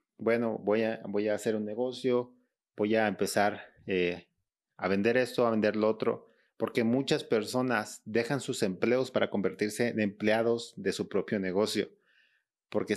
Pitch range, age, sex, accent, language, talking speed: 100-120 Hz, 30-49, male, Mexican, Spanish, 155 wpm